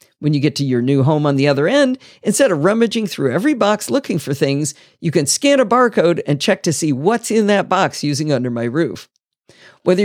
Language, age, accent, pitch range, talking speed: English, 50-69, American, 150-220 Hz, 225 wpm